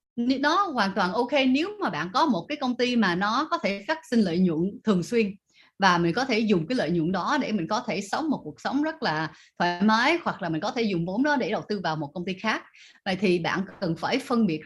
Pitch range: 185-250 Hz